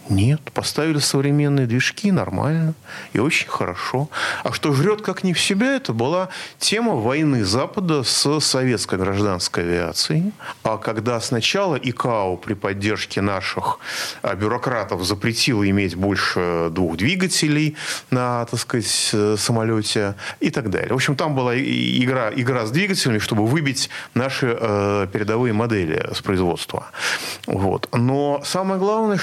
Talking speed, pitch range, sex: 125 wpm, 115-180 Hz, male